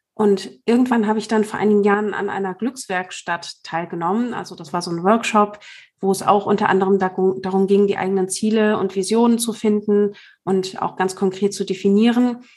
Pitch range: 195-215 Hz